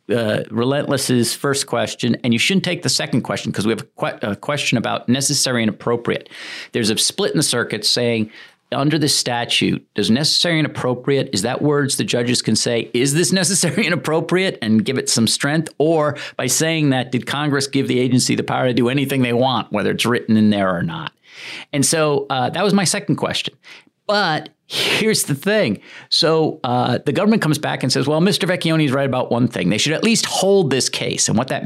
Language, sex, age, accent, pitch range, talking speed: English, male, 50-69, American, 125-160 Hz, 220 wpm